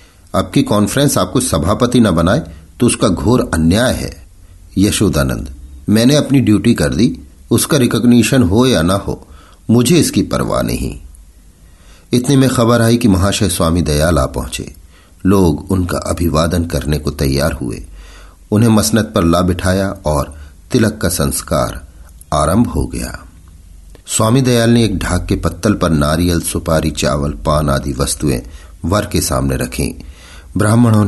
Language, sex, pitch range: Hindi, male, 75-100 Hz